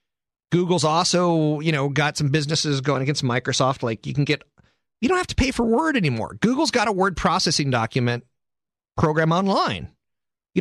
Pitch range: 115-175 Hz